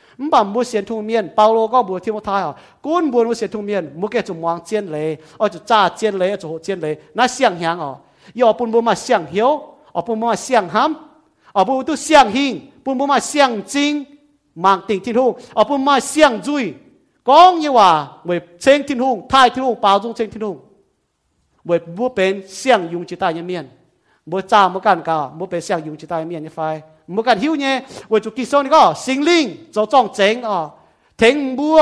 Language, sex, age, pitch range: English, male, 40-59, 175-260 Hz